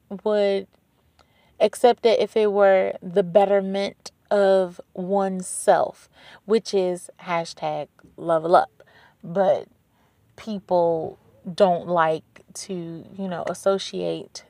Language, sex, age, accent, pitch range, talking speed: English, female, 20-39, American, 185-220 Hz, 95 wpm